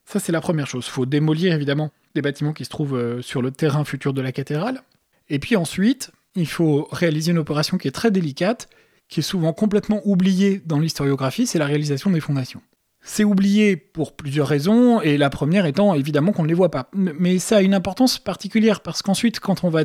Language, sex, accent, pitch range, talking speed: French, male, French, 145-190 Hz, 215 wpm